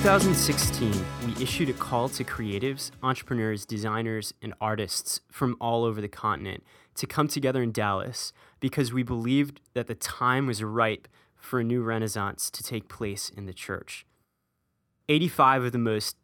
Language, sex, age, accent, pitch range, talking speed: English, male, 20-39, American, 105-125 Hz, 165 wpm